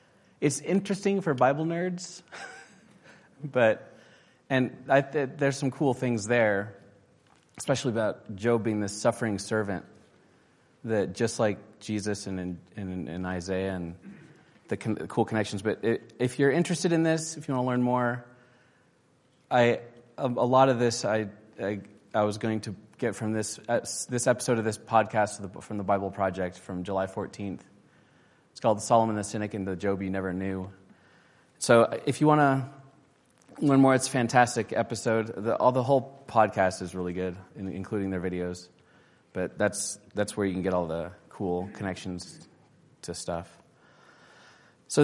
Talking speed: 155 wpm